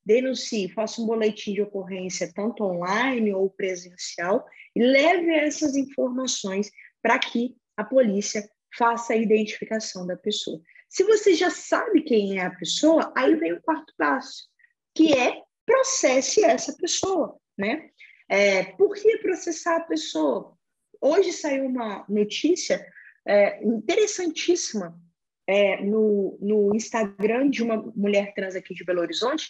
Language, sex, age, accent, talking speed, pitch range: Portuguese, female, 20-39, Brazilian, 130 wpm, 200-305 Hz